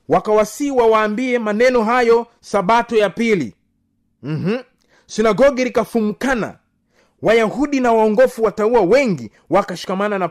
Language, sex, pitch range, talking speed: Swahili, male, 190-255 Hz, 100 wpm